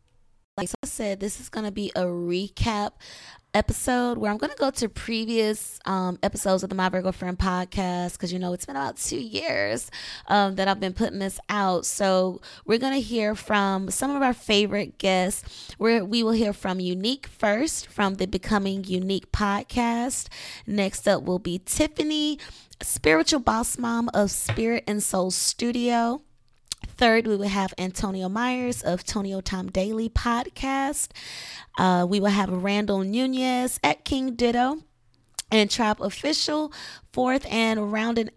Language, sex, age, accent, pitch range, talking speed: English, female, 20-39, American, 190-235 Hz, 160 wpm